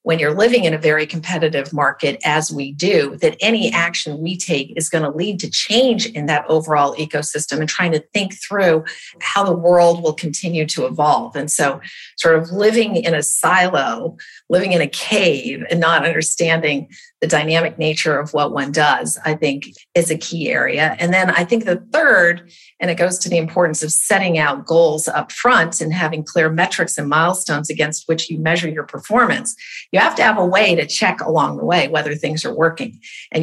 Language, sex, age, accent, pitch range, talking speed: English, female, 50-69, American, 155-180 Hz, 200 wpm